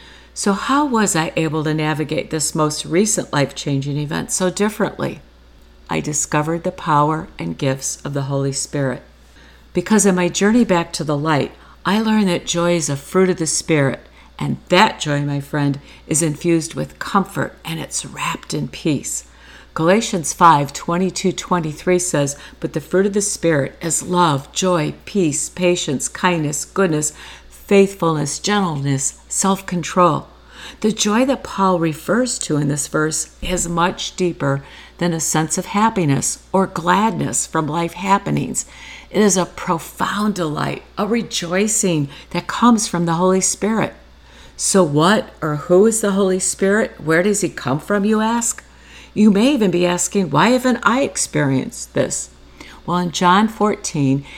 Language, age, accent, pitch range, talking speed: English, 50-69, American, 145-195 Hz, 155 wpm